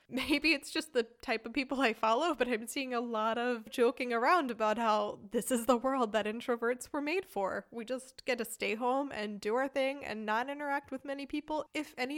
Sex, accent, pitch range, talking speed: female, American, 225-275 Hz, 230 wpm